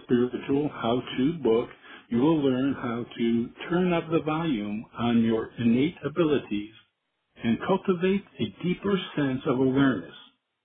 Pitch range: 120-165 Hz